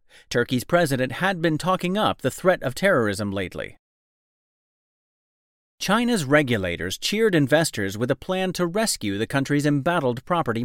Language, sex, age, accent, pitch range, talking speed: English, male, 40-59, American, 115-175 Hz, 135 wpm